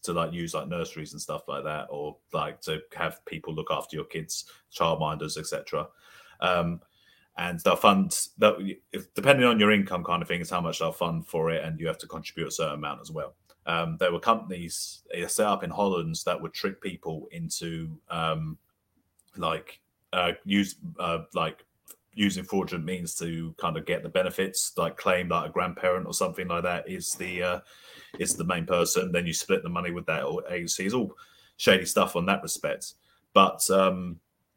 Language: English